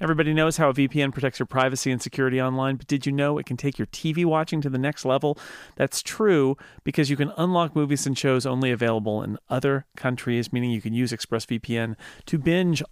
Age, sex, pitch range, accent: 40-59, male, 130-165 Hz, American